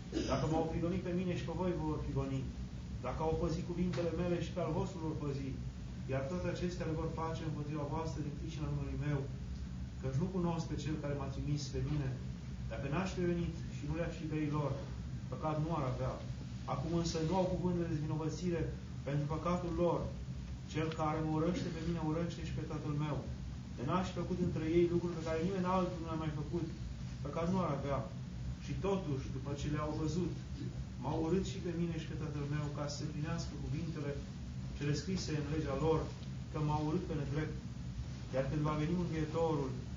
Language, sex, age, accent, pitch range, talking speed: Romanian, male, 30-49, native, 130-160 Hz, 200 wpm